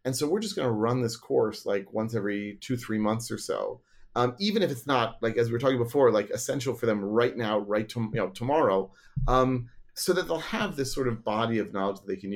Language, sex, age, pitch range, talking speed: English, male, 30-49, 115-145 Hz, 255 wpm